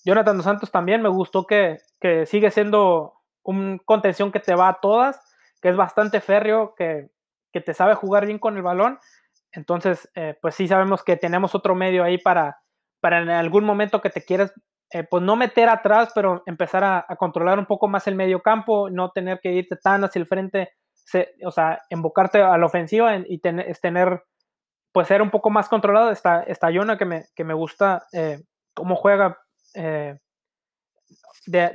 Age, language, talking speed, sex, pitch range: 20-39, Spanish, 190 wpm, male, 175-205 Hz